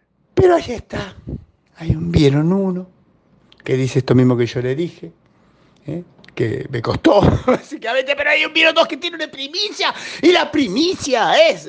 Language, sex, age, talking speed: Spanish, male, 50-69, 170 wpm